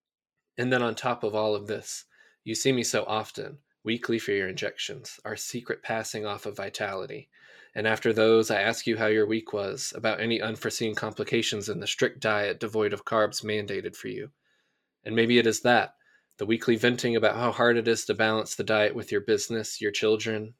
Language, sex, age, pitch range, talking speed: English, male, 20-39, 105-115 Hz, 200 wpm